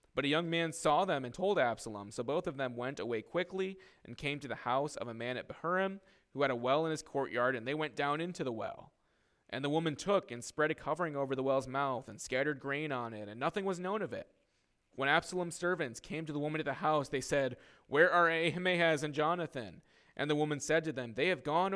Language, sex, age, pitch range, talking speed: English, male, 30-49, 120-160 Hz, 245 wpm